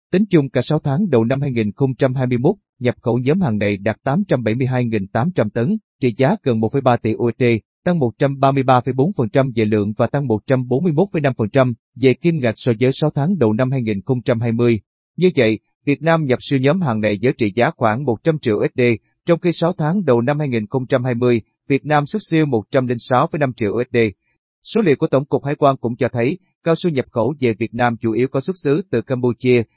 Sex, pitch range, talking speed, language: male, 115-145 Hz, 190 wpm, Vietnamese